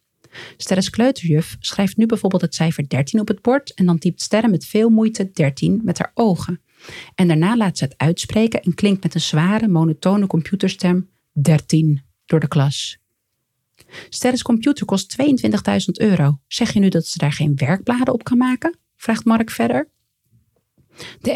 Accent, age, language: Dutch, 40-59, Dutch